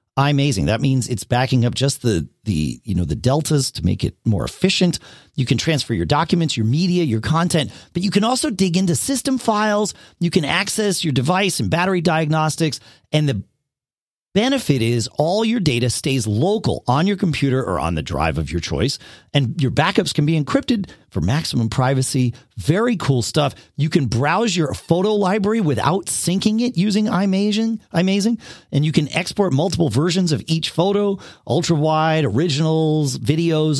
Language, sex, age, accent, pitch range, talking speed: English, male, 40-59, American, 130-185 Hz, 175 wpm